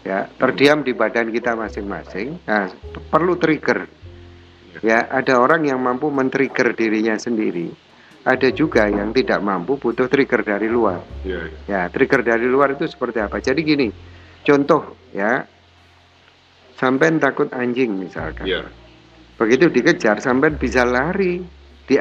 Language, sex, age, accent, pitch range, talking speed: Indonesian, male, 50-69, native, 100-135 Hz, 130 wpm